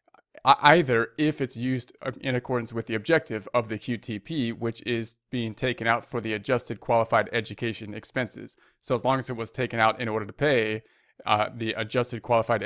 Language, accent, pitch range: English, American, 110-130 Hz